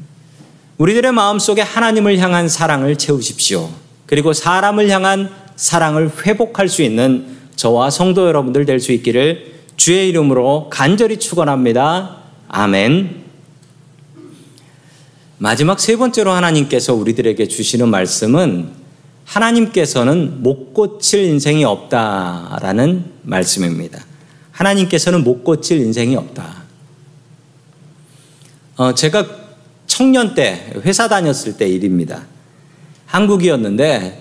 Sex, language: male, Korean